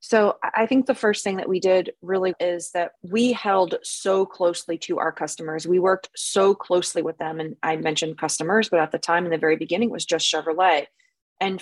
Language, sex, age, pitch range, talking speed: English, female, 20-39, 165-200 Hz, 210 wpm